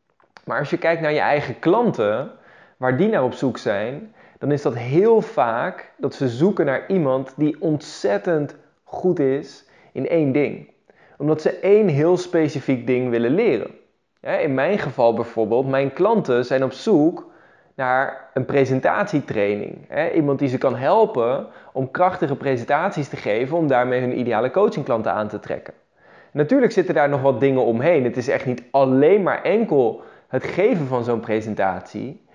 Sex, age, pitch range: male, 20-39, 125-160 Hz